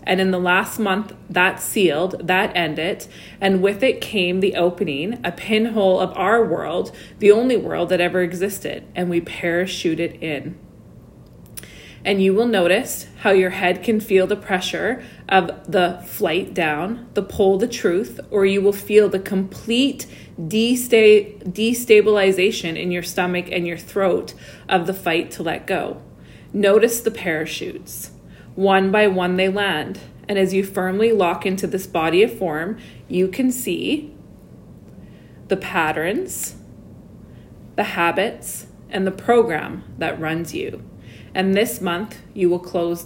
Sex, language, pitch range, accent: female, English, 180-210 Hz, American